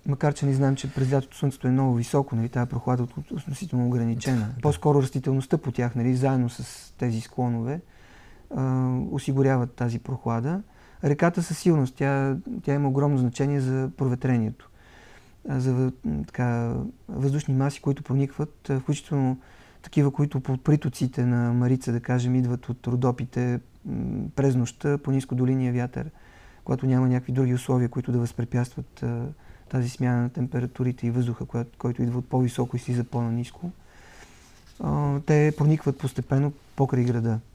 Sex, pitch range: male, 125-145 Hz